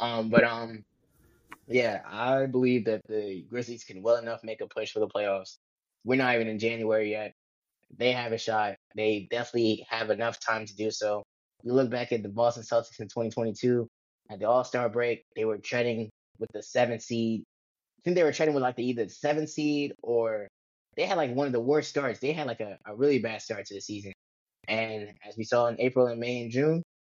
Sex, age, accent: male, 10-29, American